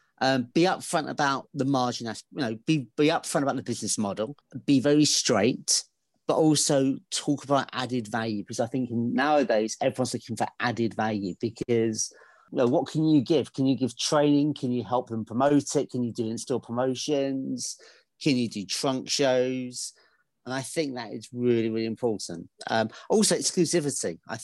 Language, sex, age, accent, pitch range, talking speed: English, male, 40-59, British, 115-140 Hz, 175 wpm